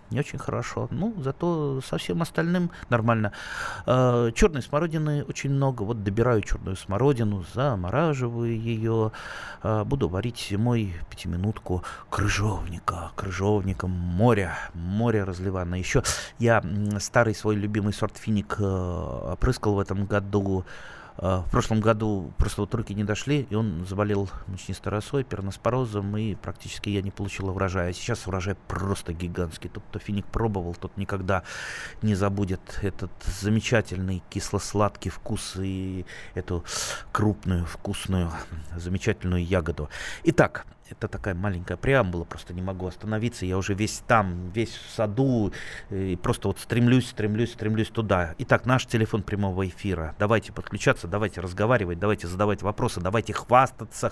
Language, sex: Russian, male